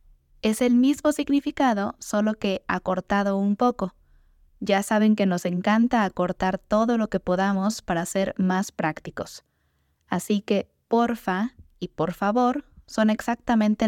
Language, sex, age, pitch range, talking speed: Spanish, female, 20-39, 170-220 Hz, 135 wpm